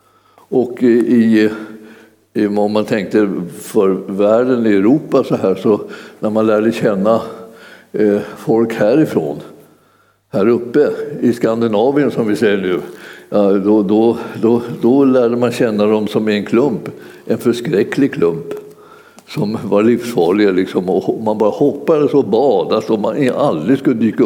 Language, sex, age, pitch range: Swedish, male, 60-79, 110-130 Hz